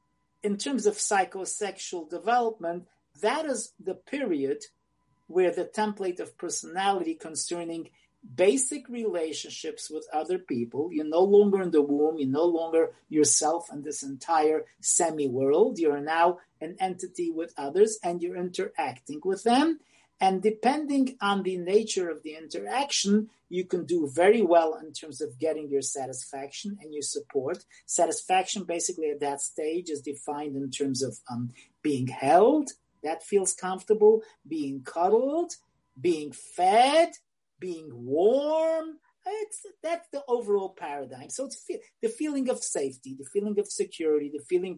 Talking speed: 145 wpm